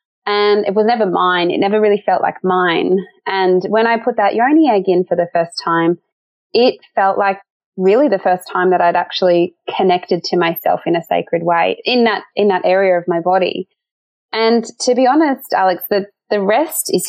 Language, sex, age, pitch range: English, female, 20-39, 180-240 Hz